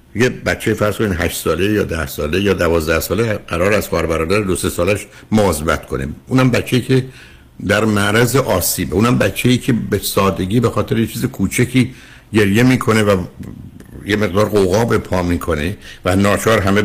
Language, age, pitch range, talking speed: Persian, 60-79, 90-115 Hz, 175 wpm